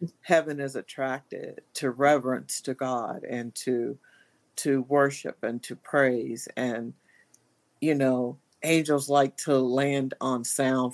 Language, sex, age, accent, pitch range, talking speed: English, female, 50-69, American, 130-200 Hz, 125 wpm